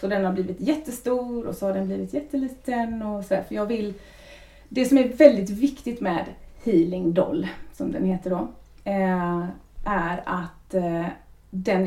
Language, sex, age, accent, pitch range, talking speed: Swedish, female, 30-49, native, 185-235 Hz, 160 wpm